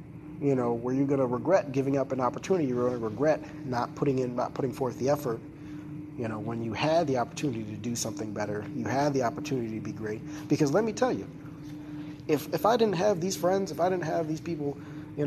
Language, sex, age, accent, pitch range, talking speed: English, male, 30-49, American, 130-150 Hz, 235 wpm